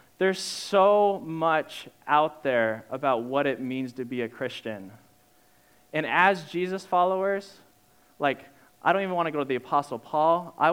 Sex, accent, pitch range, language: male, American, 140-180 Hz, English